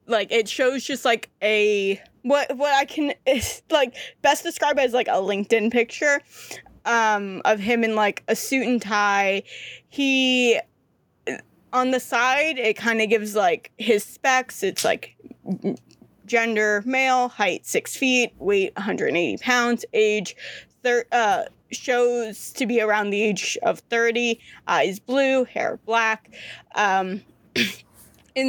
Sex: female